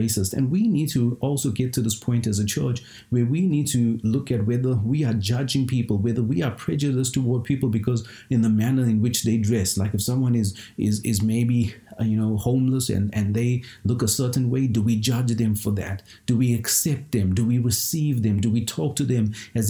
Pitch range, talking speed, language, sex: 115-140 Hz, 225 wpm, English, male